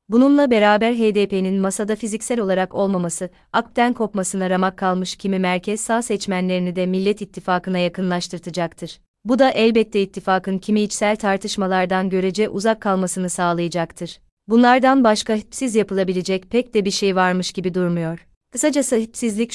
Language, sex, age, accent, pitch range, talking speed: Turkish, female, 30-49, native, 185-215 Hz, 130 wpm